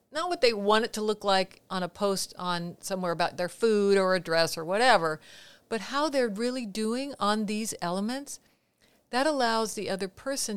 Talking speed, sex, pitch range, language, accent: 195 wpm, female, 185-235 Hz, English, American